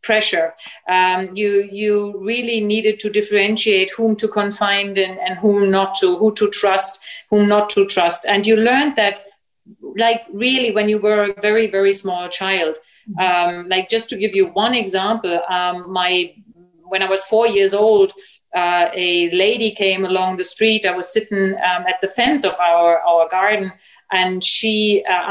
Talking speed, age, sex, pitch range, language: 175 wpm, 40-59, female, 185-215 Hz, English